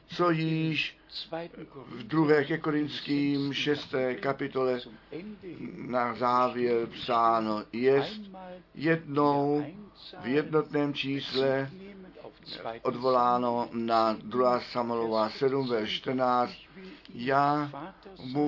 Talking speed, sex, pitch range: 80 wpm, male, 120-155 Hz